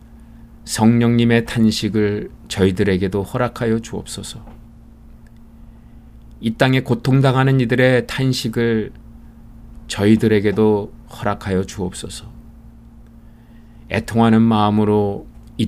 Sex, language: male, Korean